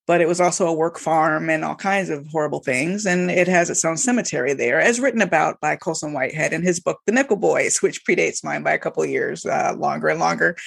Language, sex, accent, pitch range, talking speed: English, female, American, 170-200 Hz, 245 wpm